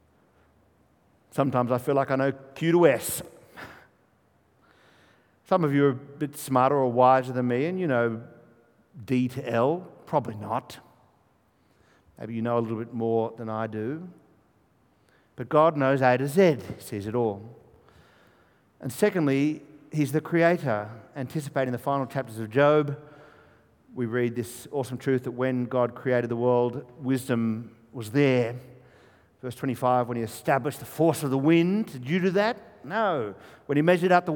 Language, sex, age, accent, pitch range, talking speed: English, male, 50-69, Australian, 120-160 Hz, 160 wpm